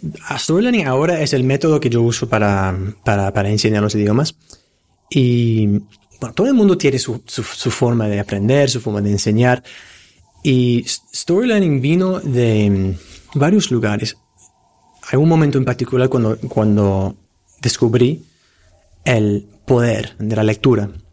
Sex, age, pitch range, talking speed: male, 30-49, 105-135 Hz, 145 wpm